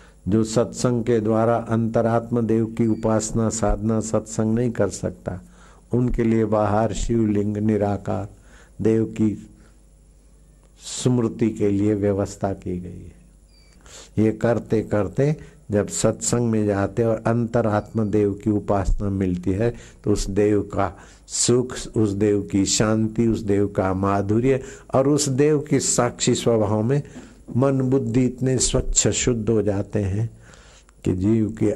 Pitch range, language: 95-110 Hz, Hindi